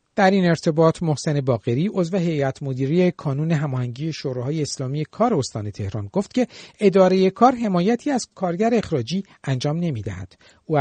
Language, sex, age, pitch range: Persian, male, 50-69, 135-195 Hz